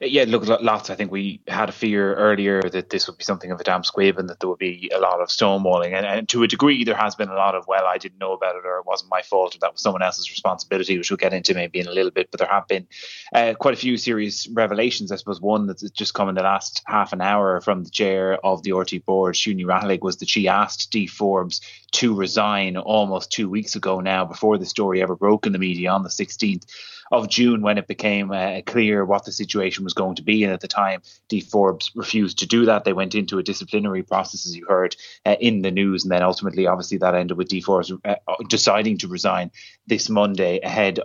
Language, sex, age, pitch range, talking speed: English, male, 20-39, 95-105 Hz, 255 wpm